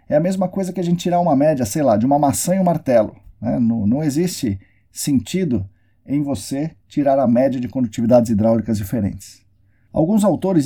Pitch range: 110-160 Hz